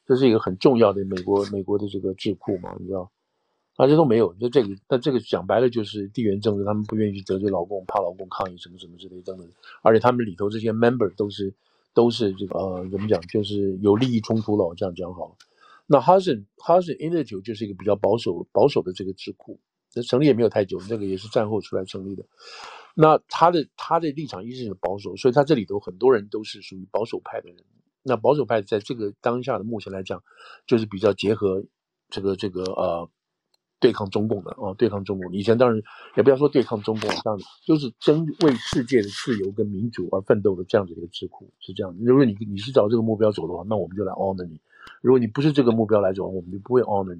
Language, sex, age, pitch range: Chinese, male, 50-69, 95-120 Hz